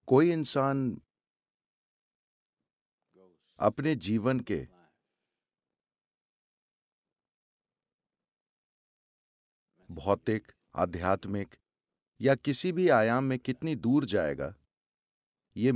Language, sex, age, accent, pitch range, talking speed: English, male, 50-69, Indian, 105-155 Hz, 60 wpm